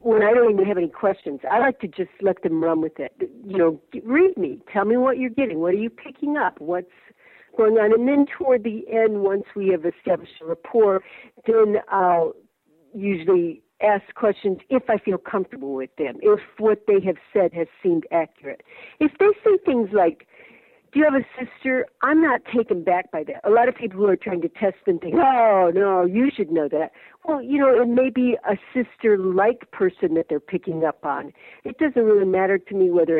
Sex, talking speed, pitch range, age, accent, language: female, 210 wpm, 180-255 Hz, 50-69, American, English